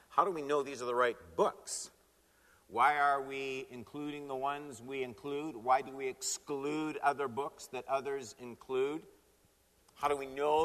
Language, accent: English, American